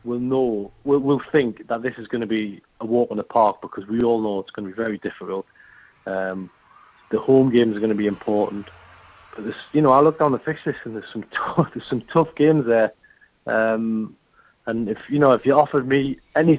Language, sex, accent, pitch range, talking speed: English, male, British, 115-145 Hz, 230 wpm